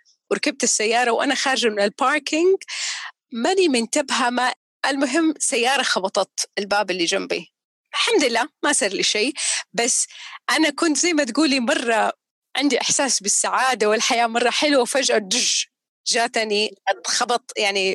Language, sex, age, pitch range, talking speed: Arabic, female, 30-49, 205-290 Hz, 125 wpm